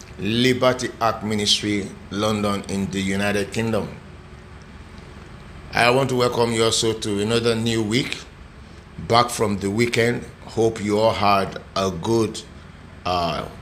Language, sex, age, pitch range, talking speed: English, male, 50-69, 90-120 Hz, 130 wpm